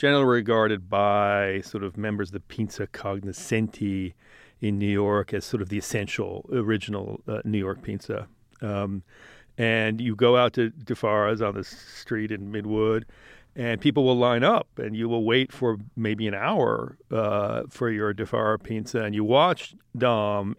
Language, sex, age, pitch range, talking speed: English, male, 40-59, 105-115 Hz, 165 wpm